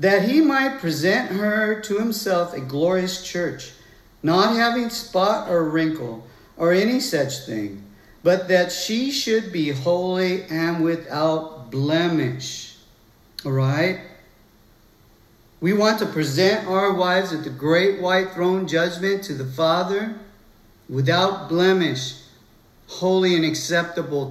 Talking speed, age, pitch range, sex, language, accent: 125 wpm, 50-69, 125-190 Hz, male, English, American